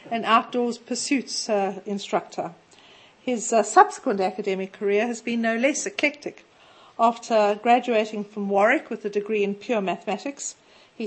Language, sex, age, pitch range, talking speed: English, female, 50-69, 195-230 Hz, 130 wpm